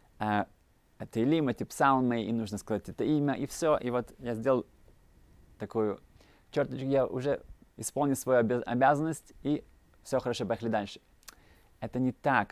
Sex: male